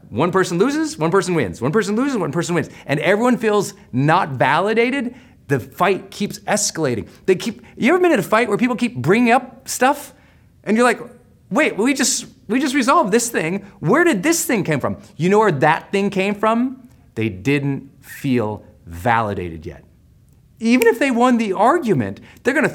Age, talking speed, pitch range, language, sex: 30-49, 195 wpm, 125-210 Hz, English, male